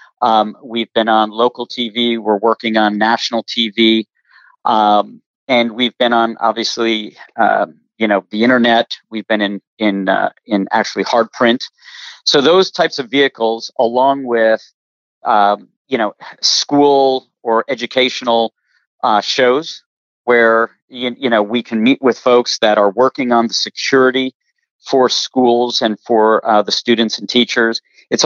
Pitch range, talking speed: 110-130 Hz, 150 wpm